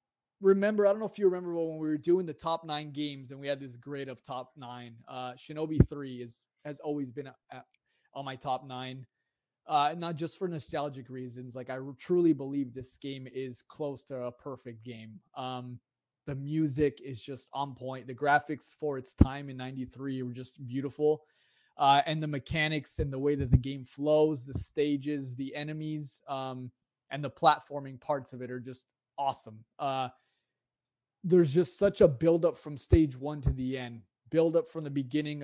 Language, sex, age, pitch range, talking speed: English, male, 20-39, 130-155 Hz, 185 wpm